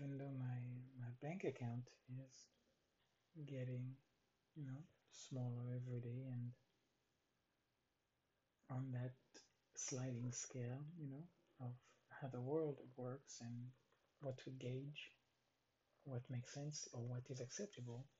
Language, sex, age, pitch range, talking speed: English, male, 50-69, 125-145 Hz, 120 wpm